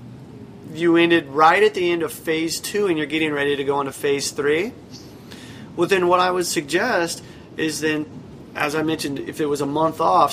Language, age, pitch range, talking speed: English, 30-49, 135-165 Hz, 205 wpm